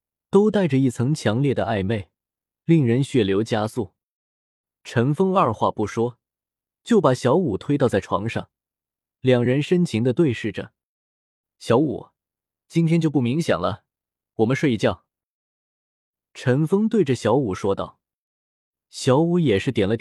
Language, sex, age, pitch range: Chinese, male, 20-39, 105-160 Hz